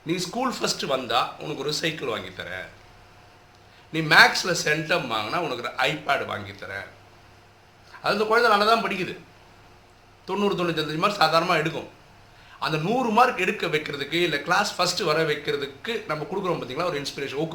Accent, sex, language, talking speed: native, male, Tamil, 145 wpm